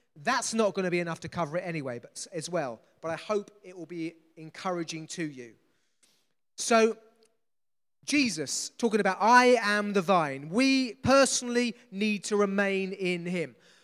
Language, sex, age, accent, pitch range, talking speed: English, male, 30-49, British, 185-230 Hz, 160 wpm